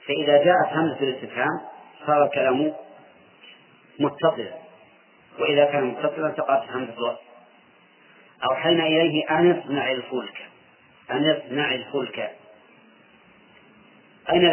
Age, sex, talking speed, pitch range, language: 40-59, male, 90 wpm, 135-170 Hz, Arabic